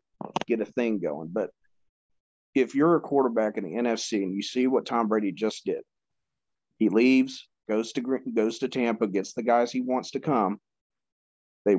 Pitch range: 110-125 Hz